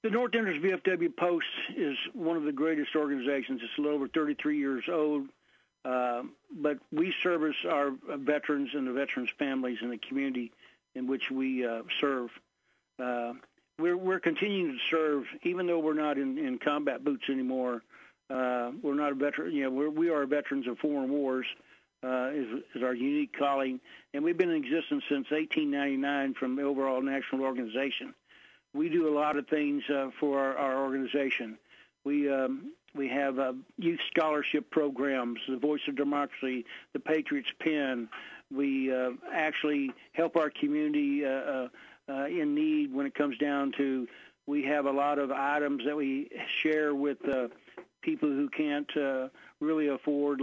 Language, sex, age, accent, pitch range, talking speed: English, male, 60-79, American, 135-155 Hz, 160 wpm